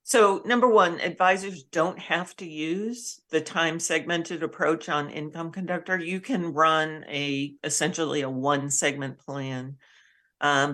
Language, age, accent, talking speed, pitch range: English, 50-69, American, 140 wpm, 150-195 Hz